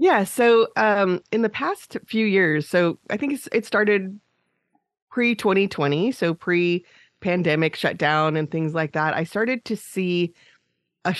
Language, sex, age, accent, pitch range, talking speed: English, female, 30-49, American, 155-200 Hz, 140 wpm